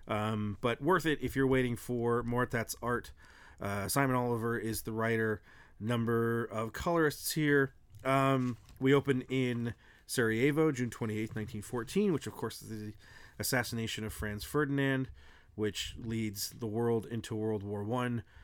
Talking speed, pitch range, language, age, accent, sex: 150 wpm, 110-145 Hz, English, 30-49, American, male